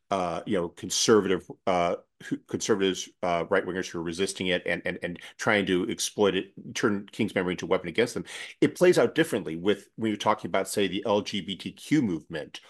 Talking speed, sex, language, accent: 195 wpm, male, English, American